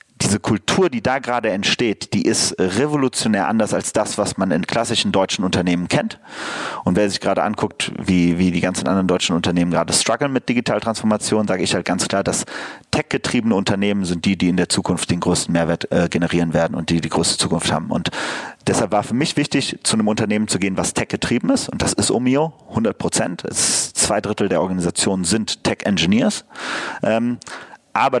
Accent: German